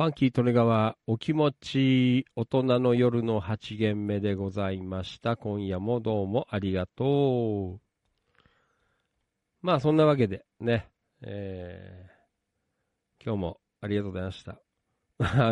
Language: Japanese